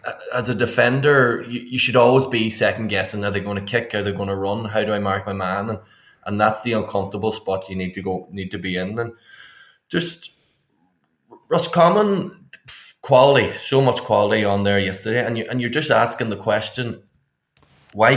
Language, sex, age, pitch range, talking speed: English, male, 20-39, 100-115 Hz, 195 wpm